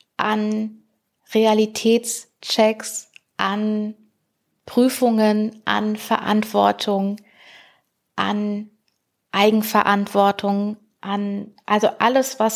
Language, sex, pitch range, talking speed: German, female, 200-220 Hz, 55 wpm